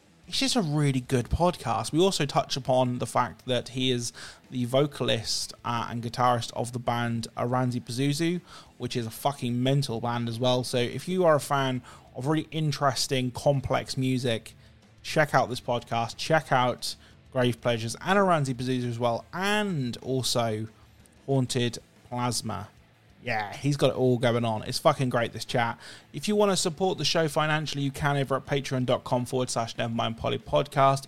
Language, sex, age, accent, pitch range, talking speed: English, male, 20-39, British, 120-150 Hz, 175 wpm